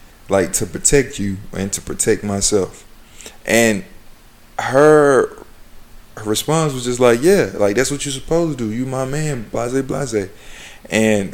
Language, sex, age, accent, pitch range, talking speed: English, male, 20-39, American, 100-125 Hz, 155 wpm